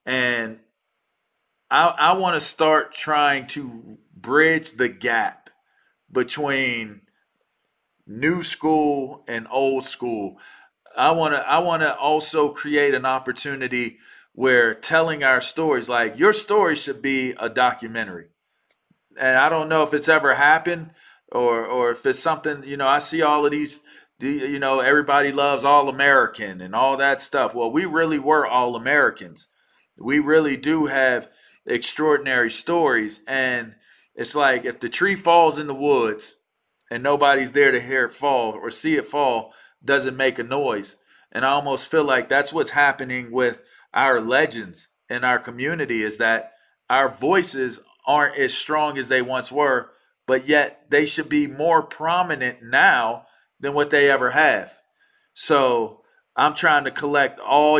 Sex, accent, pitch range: male, American, 125-155 Hz